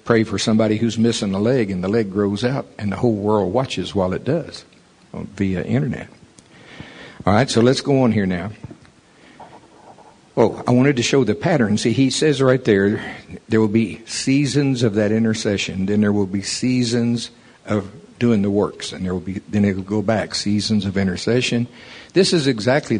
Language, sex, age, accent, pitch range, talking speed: English, male, 60-79, American, 105-125 Hz, 190 wpm